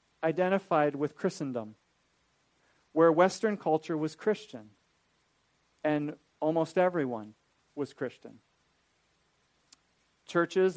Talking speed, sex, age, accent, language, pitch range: 80 wpm, male, 40-59, American, English, 155-205 Hz